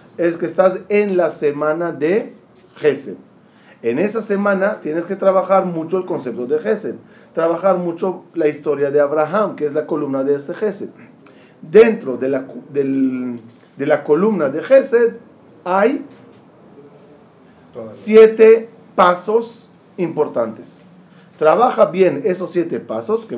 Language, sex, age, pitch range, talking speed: Spanish, male, 40-59, 150-210 Hz, 130 wpm